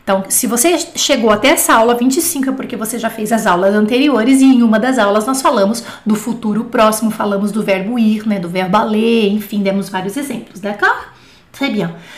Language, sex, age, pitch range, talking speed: French, female, 30-49, 210-270 Hz, 200 wpm